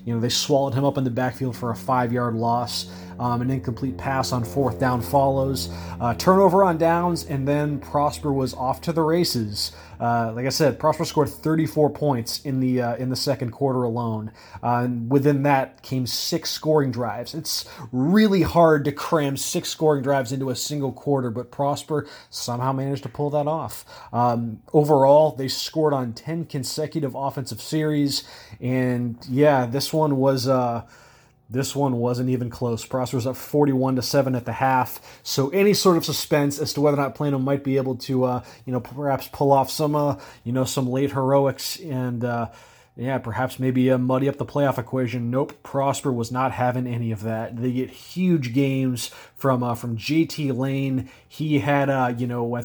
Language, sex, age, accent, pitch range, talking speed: English, male, 30-49, American, 120-140 Hz, 190 wpm